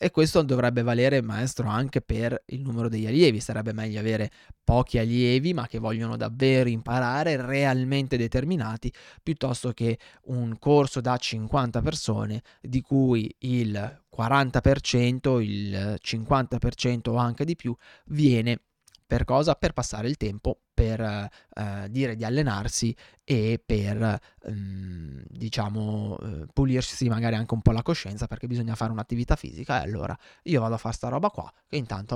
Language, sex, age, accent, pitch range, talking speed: Italian, male, 20-39, native, 110-130 Hz, 145 wpm